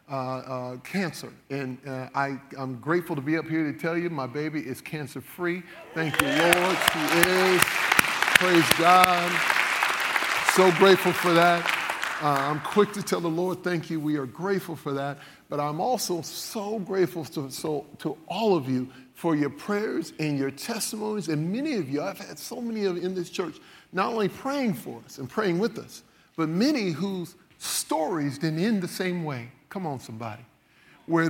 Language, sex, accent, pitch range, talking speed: English, male, American, 150-195 Hz, 185 wpm